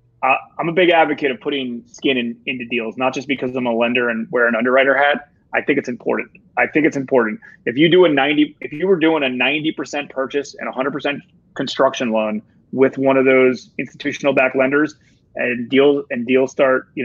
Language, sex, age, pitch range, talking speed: English, male, 30-49, 125-145 Hz, 210 wpm